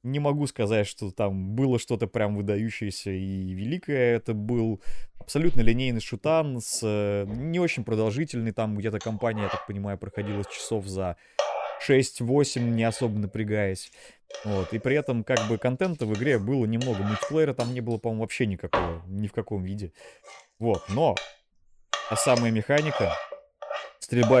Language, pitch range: Russian, 100-125 Hz